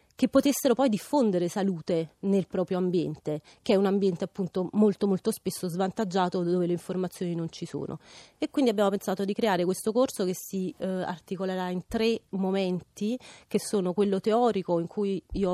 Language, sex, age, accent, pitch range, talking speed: Italian, female, 30-49, native, 180-215 Hz, 175 wpm